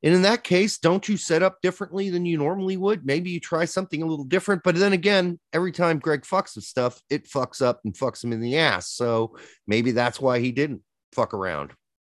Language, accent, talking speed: English, American, 230 wpm